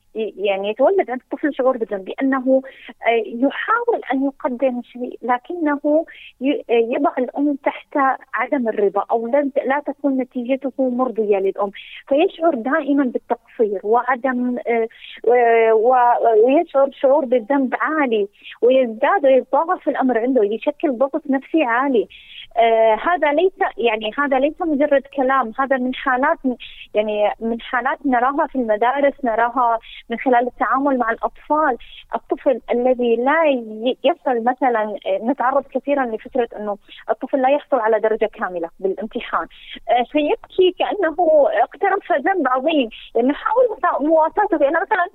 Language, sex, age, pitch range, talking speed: Arabic, female, 30-49, 235-300 Hz, 115 wpm